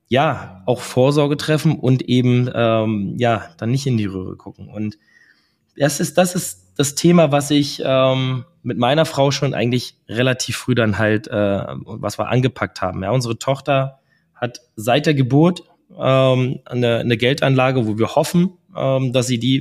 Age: 20-39